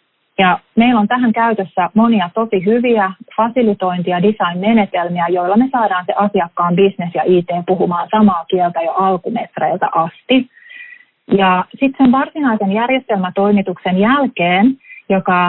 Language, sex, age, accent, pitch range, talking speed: Finnish, female, 30-49, native, 180-230 Hz, 120 wpm